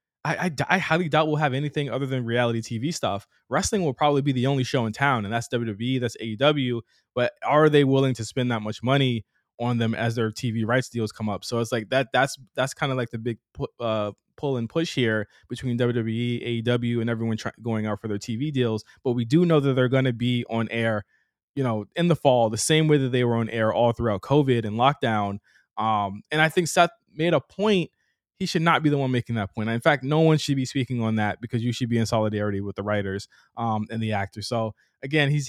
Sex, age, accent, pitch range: male, 20-39, American, 115-145 Hz